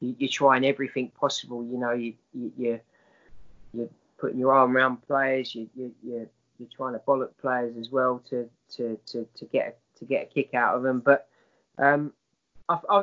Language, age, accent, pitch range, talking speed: English, 20-39, British, 120-140 Hz, 185 wpm